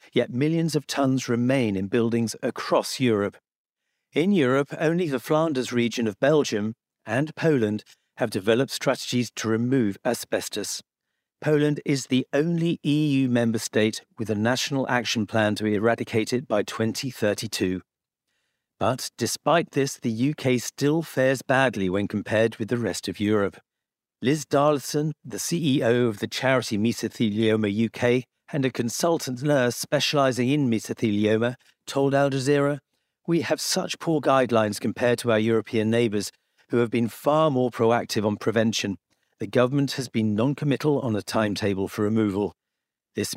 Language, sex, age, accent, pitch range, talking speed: English, male, 50-69, British, 110-140 Hz, 145 wpm